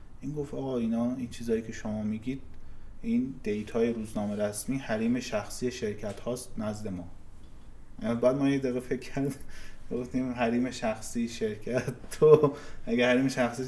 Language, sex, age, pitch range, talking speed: Persian, male, 30-49, 100-125 Hz, 135 wpm